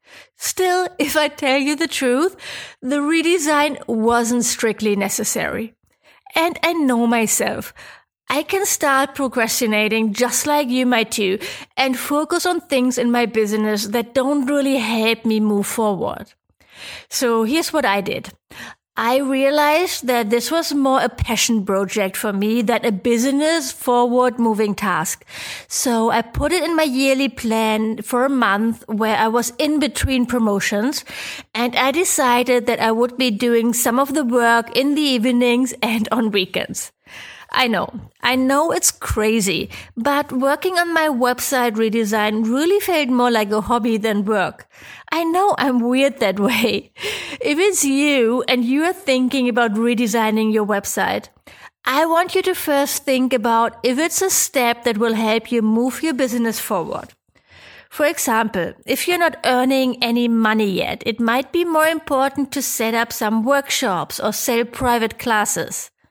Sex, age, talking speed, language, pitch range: female, 30-49, 160 wpm, English, 225-285 Hz